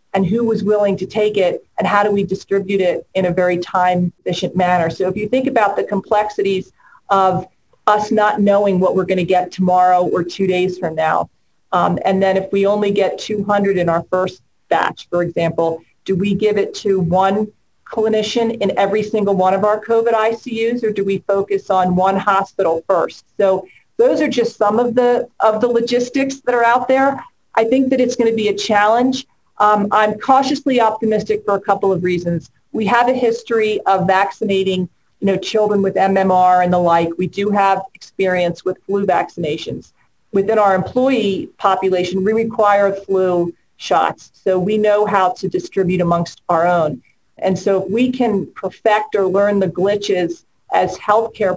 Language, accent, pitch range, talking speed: English, American, 185-215 Hz, 185 wpm